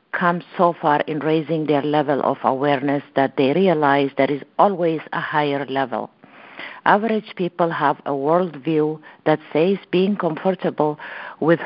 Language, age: English, 50-69